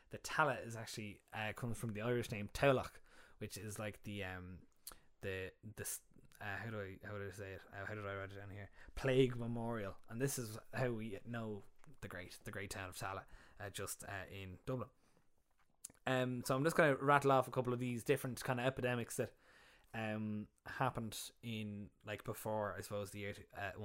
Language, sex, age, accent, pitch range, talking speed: English, male, 20-39, Irish, 105-135 Hz, 205 wpm